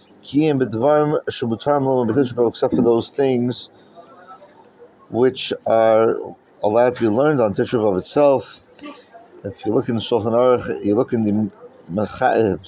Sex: male